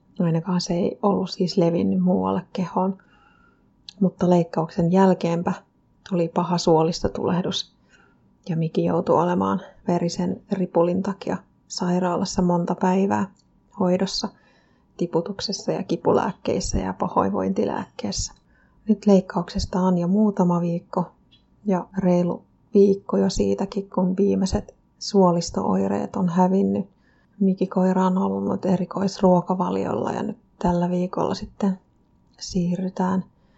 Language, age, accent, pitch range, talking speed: Finnish, 30-49, native, 170-195 Hz, 100 wpm